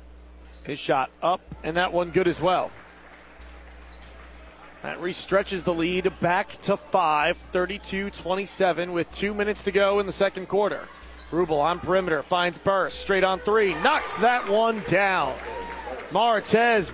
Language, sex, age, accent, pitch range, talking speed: English, male, 30-49, American, 125-200 Hz, 140 wpm